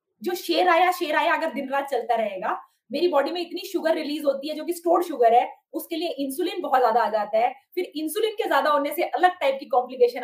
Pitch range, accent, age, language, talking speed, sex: 255-345 Hz, native, 20-39, Hindi, 240 wpm, female